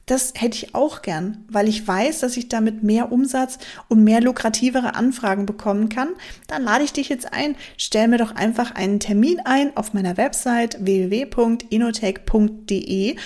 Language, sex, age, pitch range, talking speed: German, female, 30-49, 205-250 Hz, 165 wpm